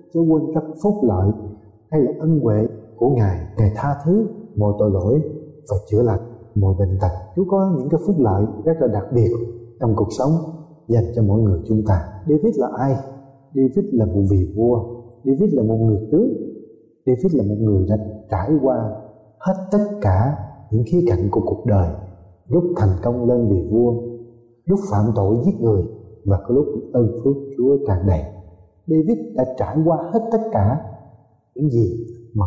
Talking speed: 185 wpm